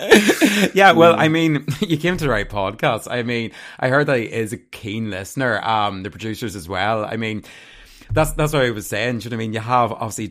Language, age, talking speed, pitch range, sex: English, 30-49, 245 wpm, 105-140 Hz, male